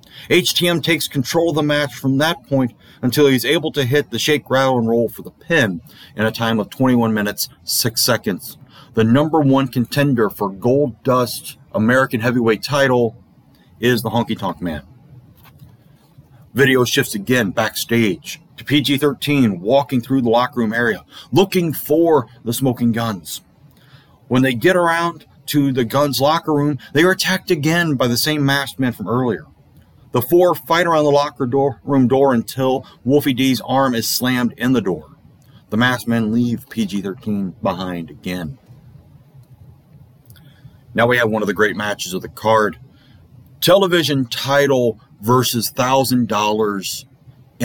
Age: 40-59